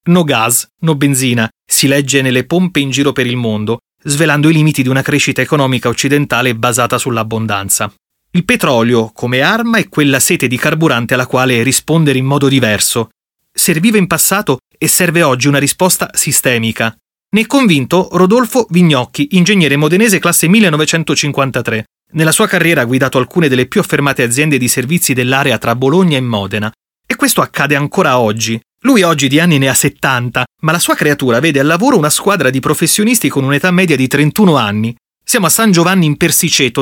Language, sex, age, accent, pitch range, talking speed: Italian, male, 30-49, native, 125-170 Hz, 175 wpm